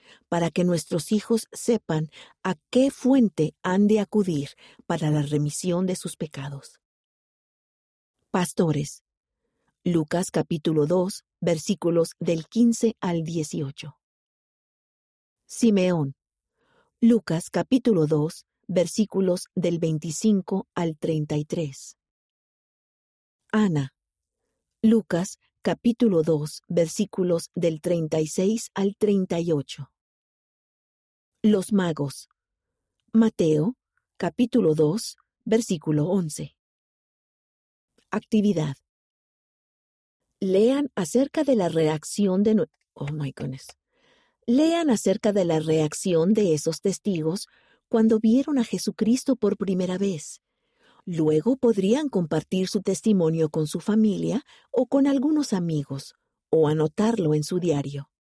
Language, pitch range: Spanish, 160-220 Hz